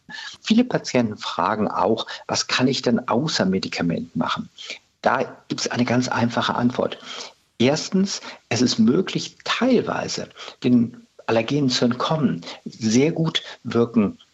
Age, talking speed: 50-69, 125 wpm